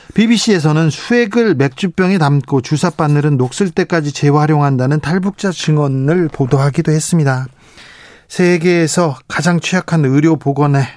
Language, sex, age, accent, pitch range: Korean, male, 40-59, native, 135-180 Hz